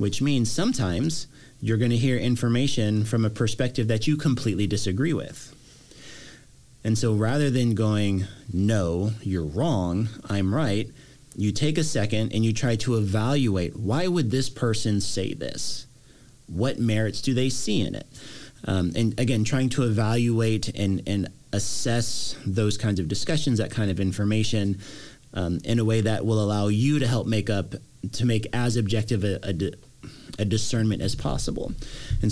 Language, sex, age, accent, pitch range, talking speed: English, male, 30-49, American, 100-130 Hz, 165 wpm